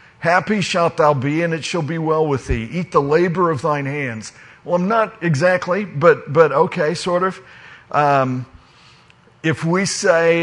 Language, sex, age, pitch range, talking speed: English, male, 50-69, 145-180 Hz, 175 wpm